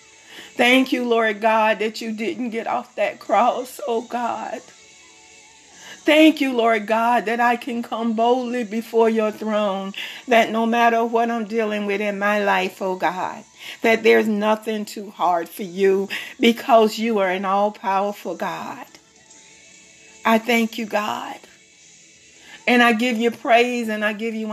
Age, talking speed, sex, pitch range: 40-59, 155 wpm, female, 210-240 Hz